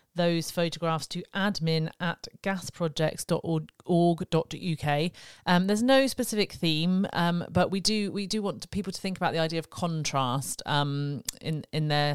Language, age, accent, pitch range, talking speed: English, 40-59, British, 150-175 Hz, 150 wpm